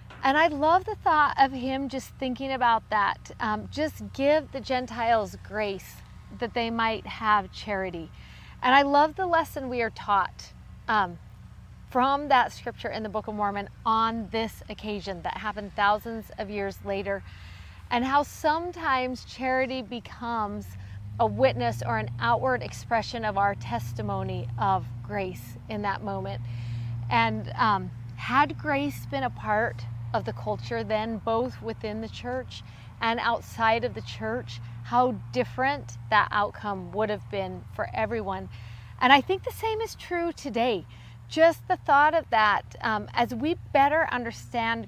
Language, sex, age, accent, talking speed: English, female, 40-59, American, 150 wpm